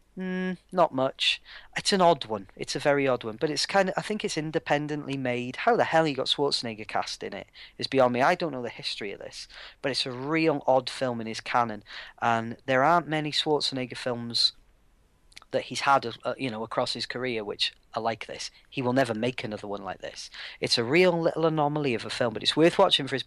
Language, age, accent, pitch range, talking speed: English, 30-49, British, 115-140 Hz, 230 wpm